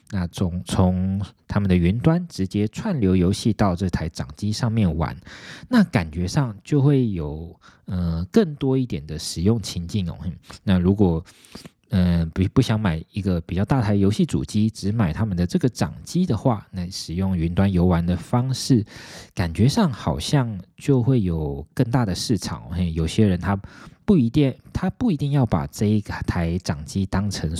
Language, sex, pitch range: Chinese, male, 85-110 Hz